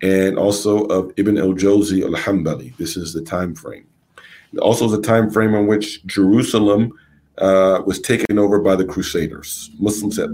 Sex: male